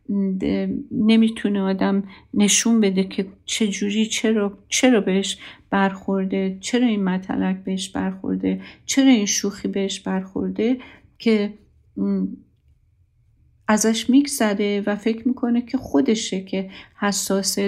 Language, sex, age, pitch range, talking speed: Persian, female, 50-69, 190-220 Hz, 100 wpm